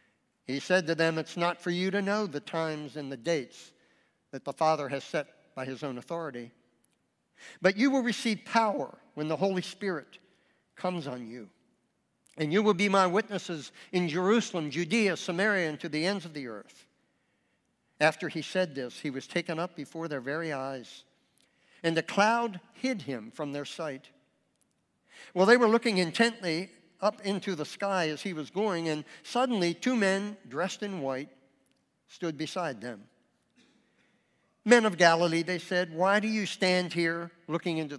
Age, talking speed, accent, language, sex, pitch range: 60-79, 170 wpm, American, English, male, 150-195 Hz